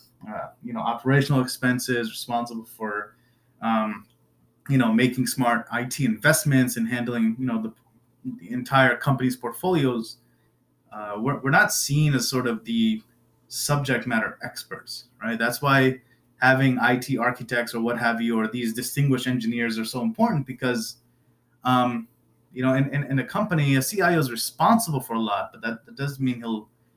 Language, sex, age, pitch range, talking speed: English, male, 20-39, 115-130 Hz, 165 wpm